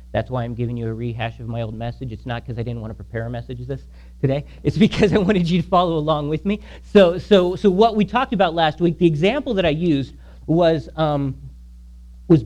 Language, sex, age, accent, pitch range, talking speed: English, male, 40-59, American, 130-210 Hz, 240 wpm